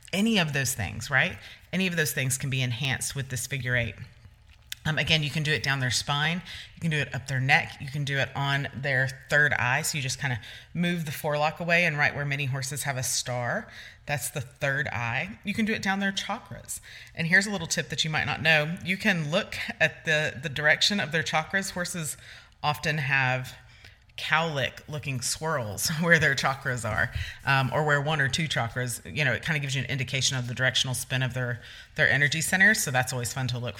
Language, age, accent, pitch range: English, 30-49, American, 125-160 Hz